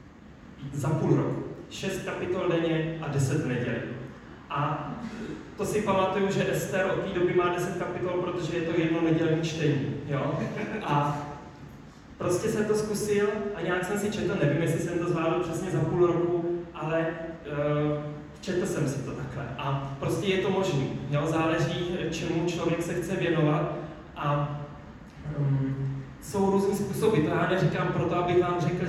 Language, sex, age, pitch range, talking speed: Czech, male, 30-49, 155-180 Hz, 155 wpm